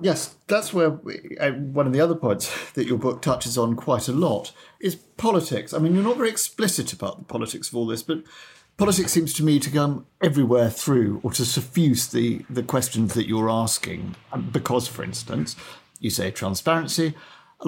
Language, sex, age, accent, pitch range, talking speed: English, male, 50-69, British, 95-145 Hz, 190 wpm